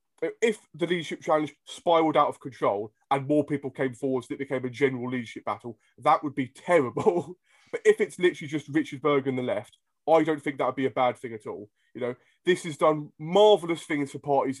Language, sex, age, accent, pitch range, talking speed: English, male, 20-39, British, 130-170 Hz, 220 wpm